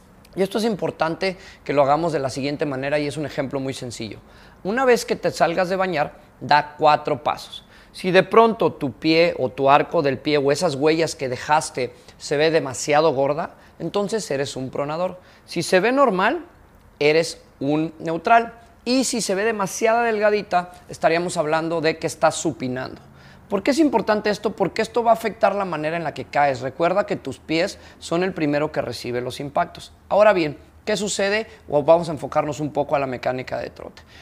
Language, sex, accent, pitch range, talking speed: Spanish, male, Mexican, 140-190 Hz, 195 wpm